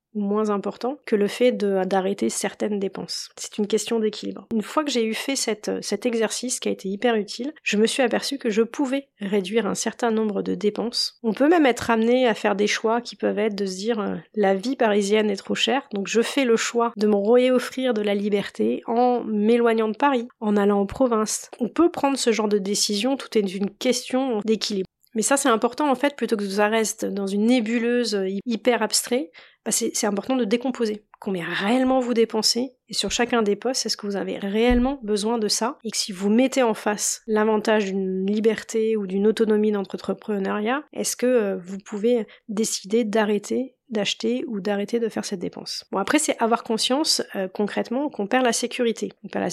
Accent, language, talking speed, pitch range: French, French, 205 wpm, 205-240 Hz